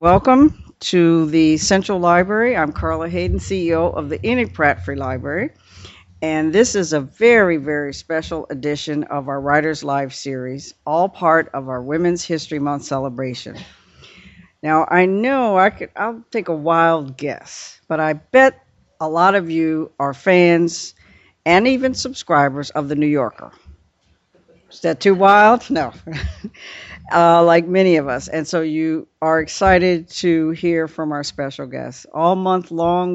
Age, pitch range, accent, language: 60-79, 150-180 Hz, American, English